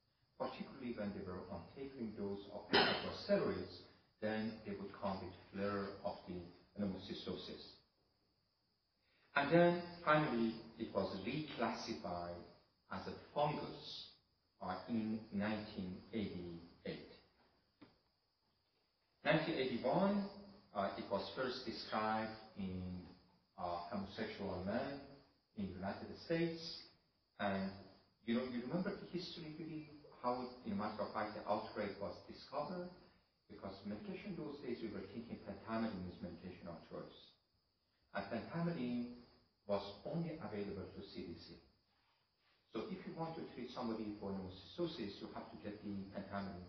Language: English